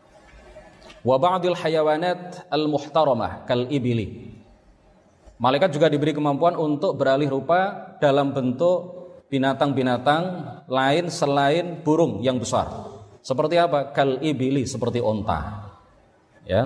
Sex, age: male, 30-49